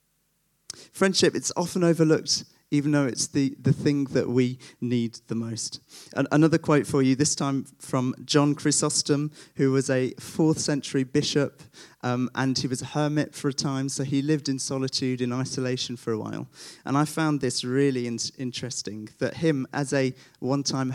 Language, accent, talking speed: English, British, 170 wpm